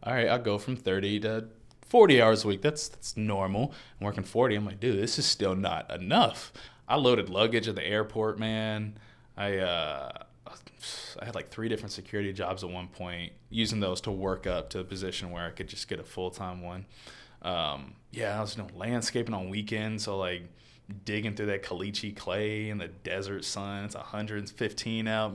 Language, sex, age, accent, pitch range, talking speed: English, male, 20-39, American, 95-115 Hz, 195 wpm